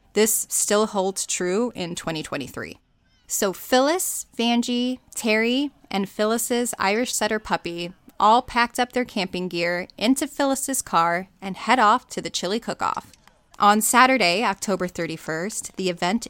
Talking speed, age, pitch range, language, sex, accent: 135 wpm, 20-39, 180-235 Hz, English, female, American